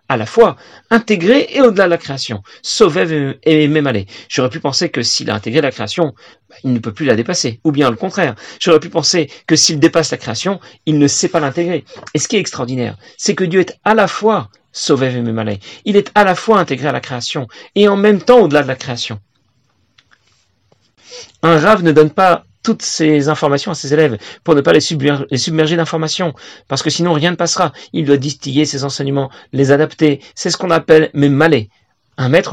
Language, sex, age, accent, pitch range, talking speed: French, male, 40-59, French, 140-185 Hz, 210 wpm